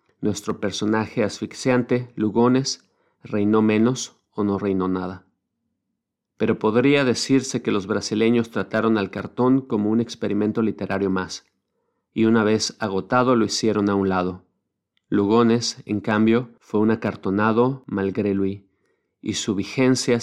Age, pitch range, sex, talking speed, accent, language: 40-59, 100-115 Hz, male, 130 wpm, Mexican, Spanish